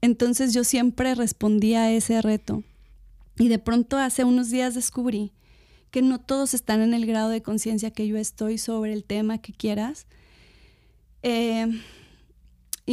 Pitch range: 225-255 Hz